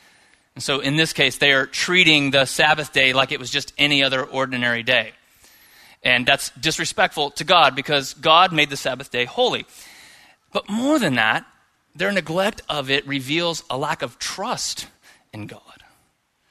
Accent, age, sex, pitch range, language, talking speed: American, 30-49, male, 135-175 Hz, English, 165 wpm